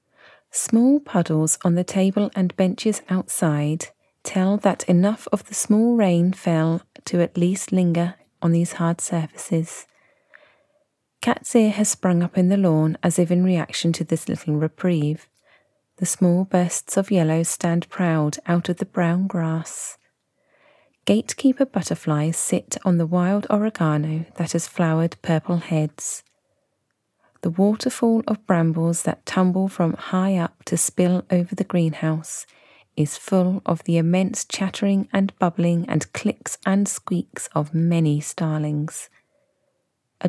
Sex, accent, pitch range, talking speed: female, British, 160-195 Hz, 140 wpm